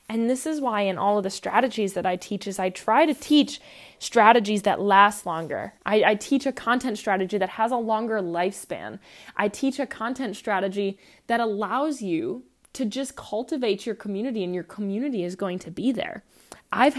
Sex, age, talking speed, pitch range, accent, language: female, 20-39, 190 wpm, 195-240 Hz, American, English